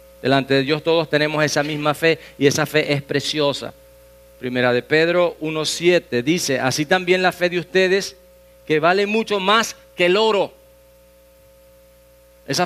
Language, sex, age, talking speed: English, male, 40-59, 150 wpm